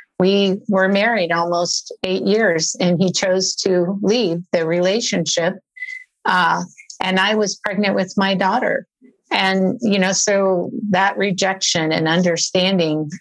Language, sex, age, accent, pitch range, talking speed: English, female, 50-69, American, 180-210 Hz, 130 wpm